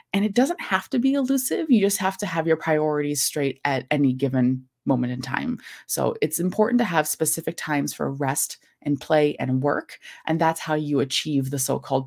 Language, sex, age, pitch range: English, female, 20-39, 140-180 Hz